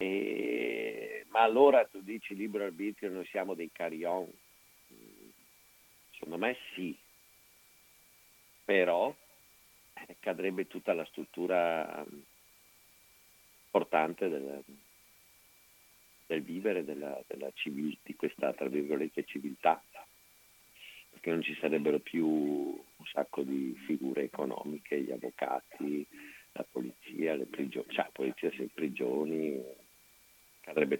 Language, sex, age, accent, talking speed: Italian, male, 50-69, native, 100 wpm